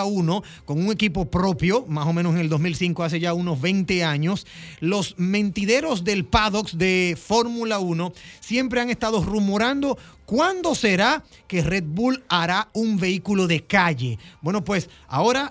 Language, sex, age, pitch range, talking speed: Spanish, male, 30-49, 175-225 Hz, 155 wpm